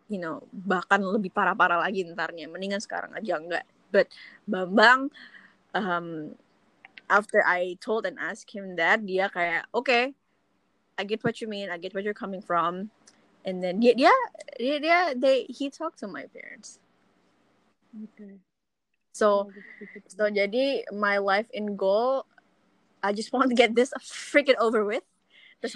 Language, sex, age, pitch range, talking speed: Indonesian, female, 20-39, 190-240 Hz, 145 wpm